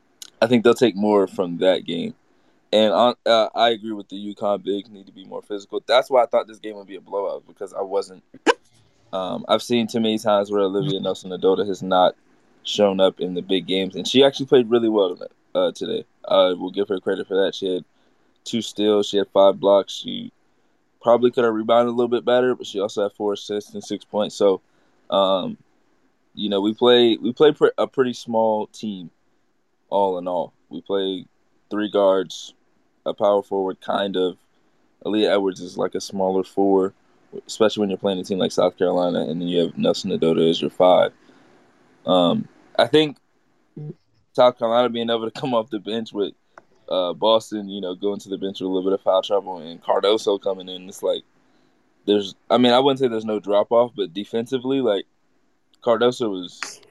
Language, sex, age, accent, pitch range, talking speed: English, male, 20-39, American, 95-115 Hz, 205 wpm